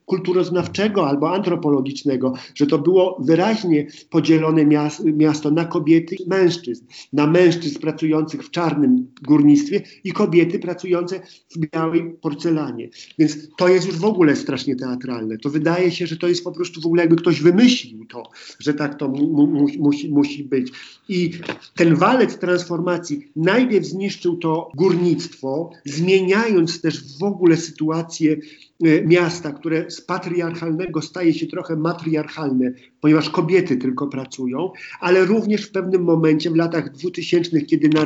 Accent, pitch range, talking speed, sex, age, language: native, 150-180 Hz, 140 wpm, male, 50-69, Polish